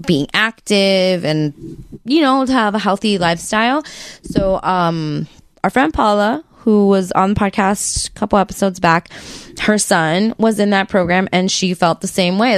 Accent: American